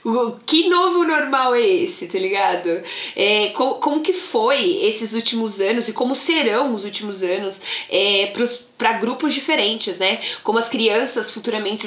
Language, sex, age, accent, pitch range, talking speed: Portuguese, female, 20-39, Brazilian, 195-250 Hz, 140 wpm